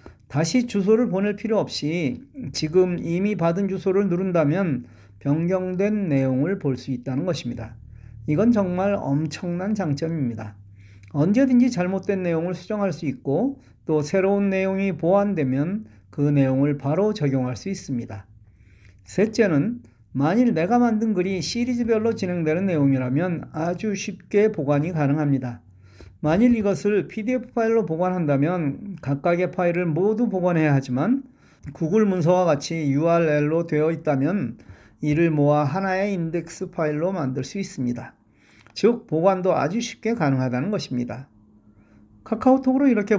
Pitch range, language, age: 135-200 Hz, Korean, 40-59